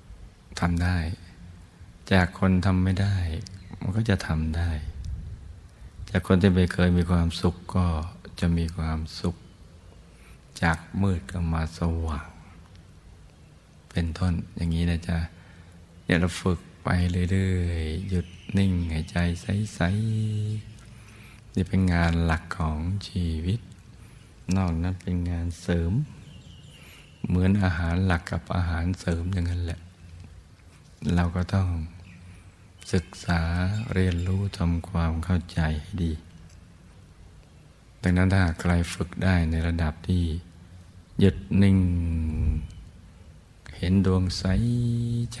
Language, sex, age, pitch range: Thai, male, 60-79, 85-95 Hz